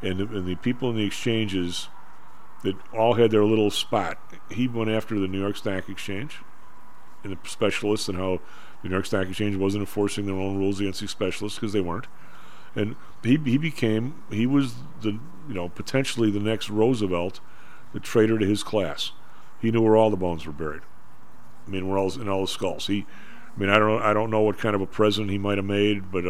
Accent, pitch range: American, 95-115 Hz